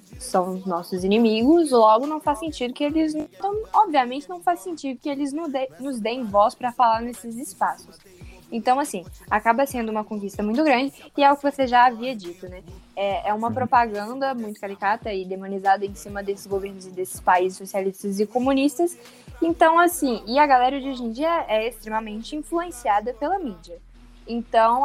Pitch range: 210-275 Hz